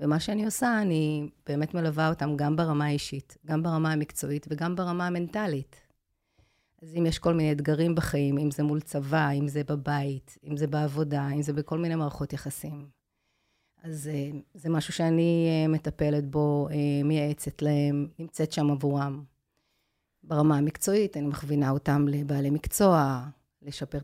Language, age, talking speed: English, 30-49, 145 wpm